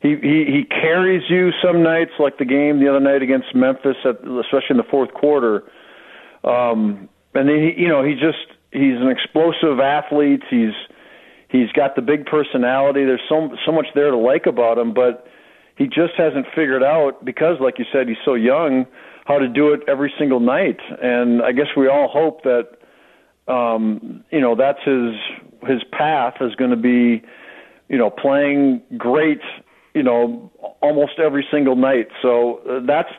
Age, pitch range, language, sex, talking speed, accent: 50-69, 125-165 Hz, English, male, 180 wpm, American